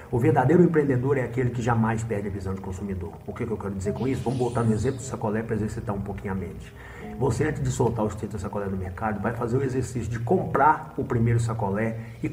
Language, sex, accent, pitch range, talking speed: Portuguese, male, Brazilian, 100-115 Hz, 260 wpm